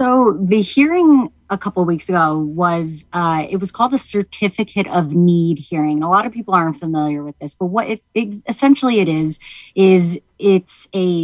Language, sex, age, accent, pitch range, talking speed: English, female, 30-49, American, 160-200 Hz, 190 wpm